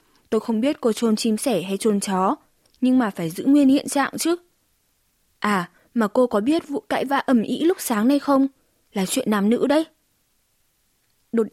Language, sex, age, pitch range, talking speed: Vietnamese, female, 20-39, 210-260 Hz, 200 wpm